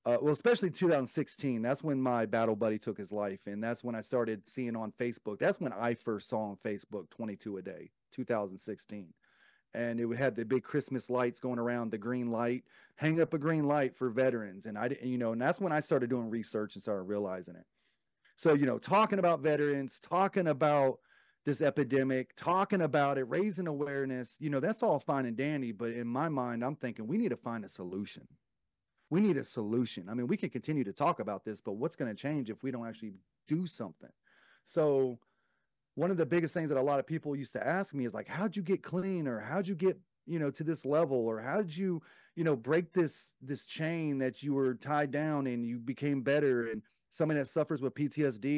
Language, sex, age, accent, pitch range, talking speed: English, male, 30-49, American, 120-155 Hz, 225 wpm